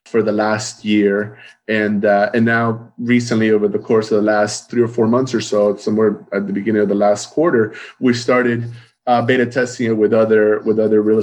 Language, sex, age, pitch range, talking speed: English, male, 20-39, 100-120 Hz, 215 wpm